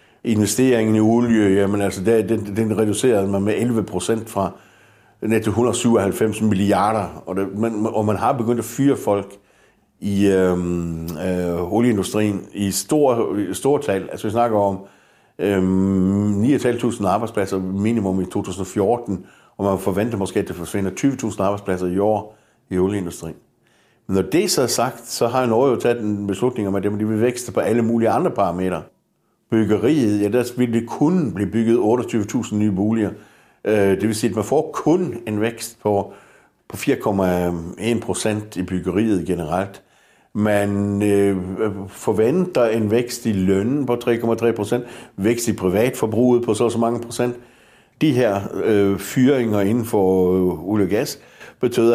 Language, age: Danish, 60-79